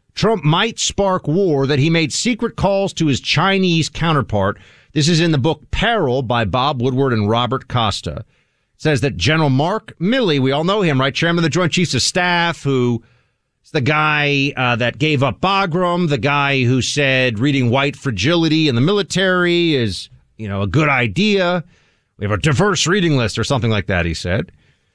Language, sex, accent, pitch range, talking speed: English, male, American, 130-185 Hz, 190 wpm